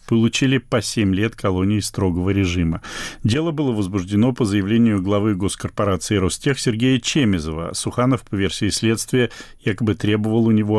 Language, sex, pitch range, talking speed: Russian, male, 95-115 Hz, 140 wpm